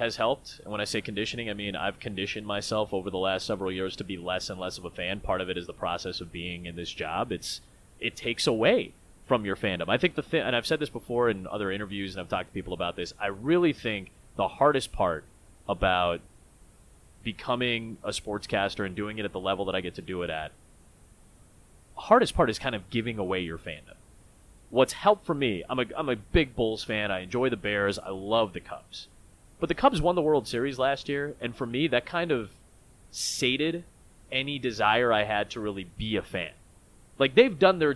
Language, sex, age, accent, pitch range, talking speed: English, male, 30-49, American, 95-125 Hz, 225 wpm